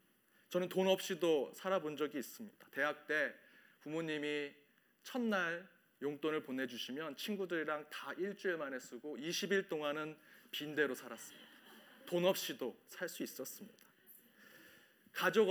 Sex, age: male, 40-59